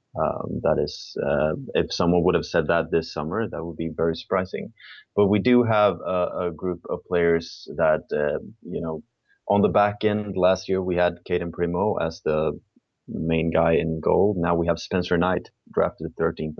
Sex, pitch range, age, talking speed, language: male, 80-90 Hz, 20-39, 190 wpm, English